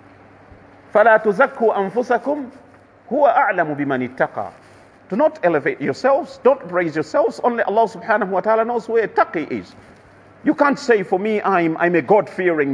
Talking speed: 130 wpm